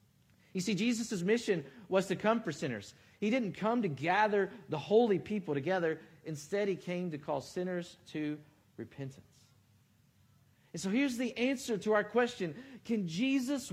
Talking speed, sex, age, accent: 155 wpm, male, 40-59, American